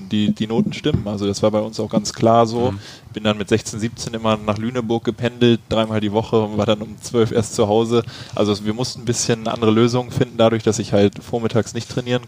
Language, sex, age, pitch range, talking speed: German, male, 20-39, 105-125 Hz, 235 wpm